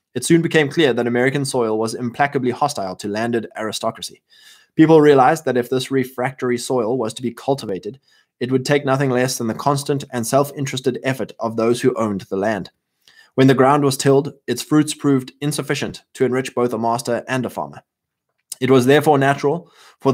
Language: English